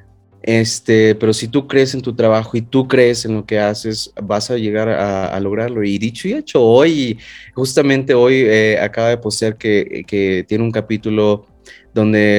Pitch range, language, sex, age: 100-115 Hz, Spanish, male, 20-39